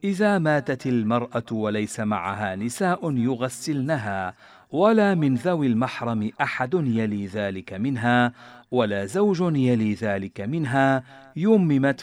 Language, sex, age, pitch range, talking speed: Arabic, male, 50-69, 105-150 Hz, 105 wpm